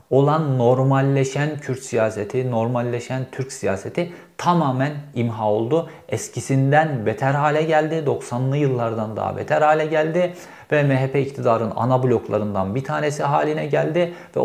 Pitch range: 115-150 Hz